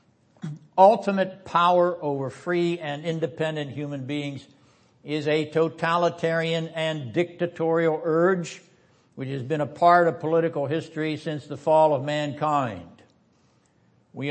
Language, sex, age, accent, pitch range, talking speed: English, male, 60-79, American, 120-155 Hz, 115 wpm